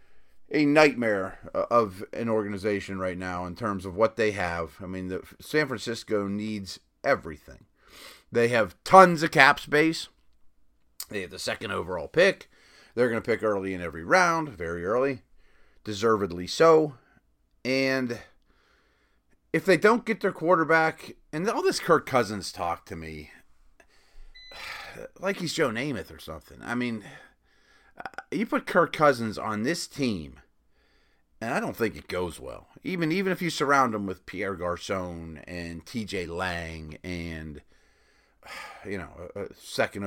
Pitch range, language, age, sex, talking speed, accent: 85-135 Hz, English, 40-59, male, 145 wpm, American